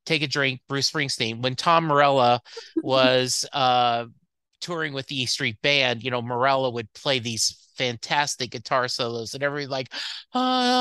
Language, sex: English, male